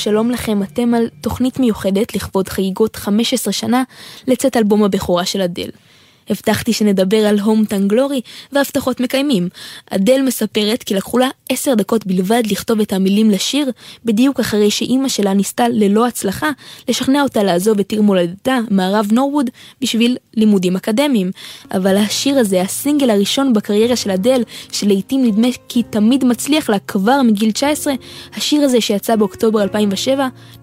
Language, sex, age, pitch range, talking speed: Hebrew, female, 20-39, 200-245 Hz, 145 wpm